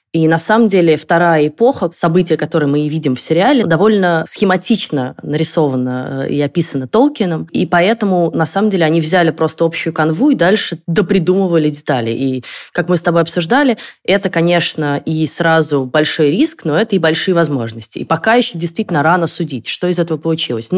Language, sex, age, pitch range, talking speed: Russian, female, 20-39, 150-185 Hz, 175 wpm